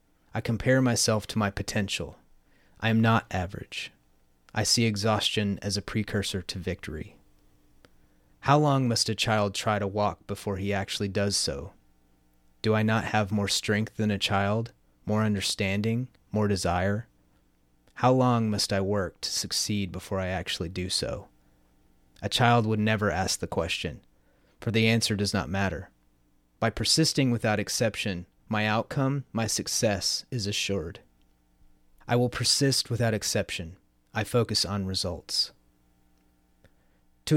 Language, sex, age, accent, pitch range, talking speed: English, male, 30-49, American, 85-110 Hz, 145 wpm